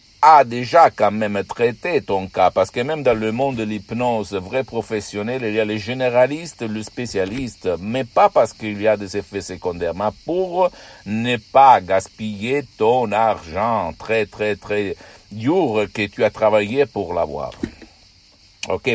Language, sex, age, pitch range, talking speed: Italian, male, 60-79, 100-125 Hz, 160 wpm